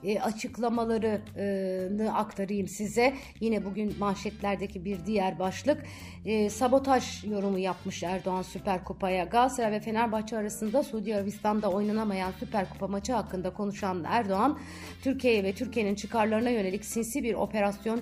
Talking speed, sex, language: 120 wpm, female, Turkish